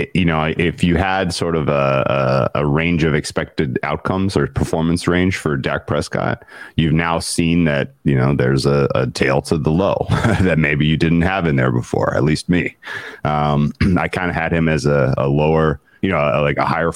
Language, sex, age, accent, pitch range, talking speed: English, male, 30-49, American, 70-80 Hz, 210 wpm